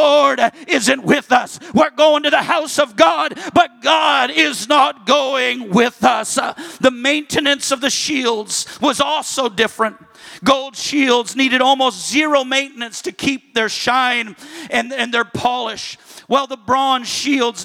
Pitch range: 235-270 Hz